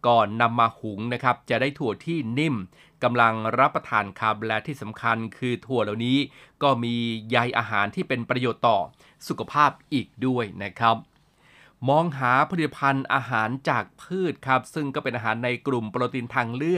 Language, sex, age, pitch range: Thai, male, 20-39, 115-140 Hz